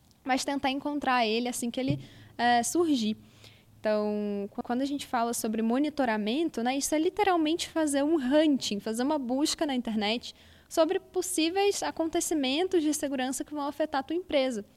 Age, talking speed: 10-29, 155 wpm